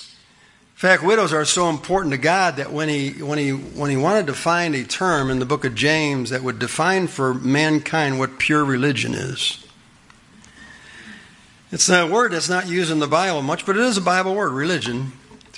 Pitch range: 125-155 Hz